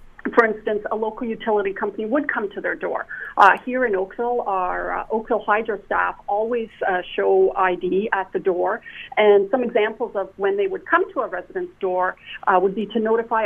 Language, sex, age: English, female, 40-59